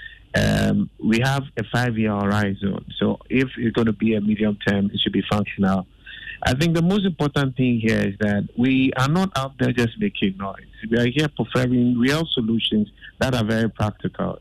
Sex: male